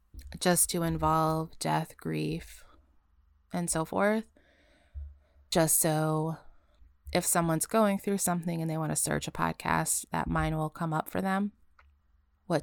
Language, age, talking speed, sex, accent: English, 20-39, 145 wpm, female, American